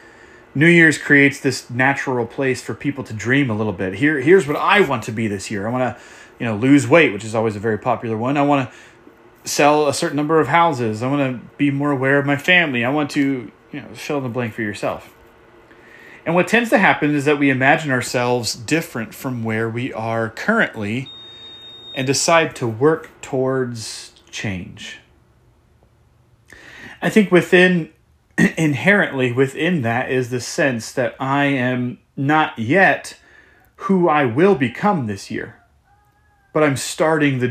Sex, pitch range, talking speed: male, 120-150 Hz, 180 wpm